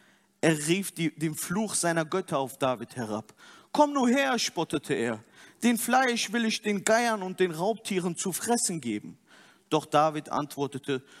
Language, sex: German, male